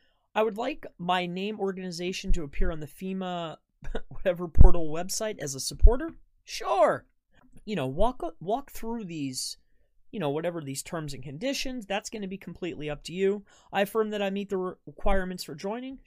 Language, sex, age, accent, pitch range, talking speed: English, male, 30-49, American, 150-210 Hz, 180 wpm